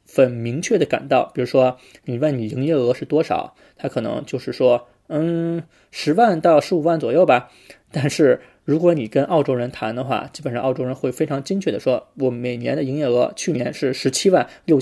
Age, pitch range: 20-39, 130-165 Hz